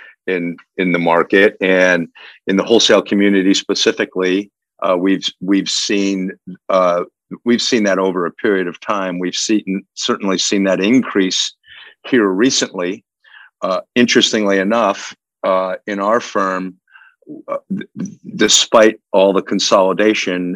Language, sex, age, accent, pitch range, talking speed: English, male, 50-69, American, 90-100 Hz, 130 wpm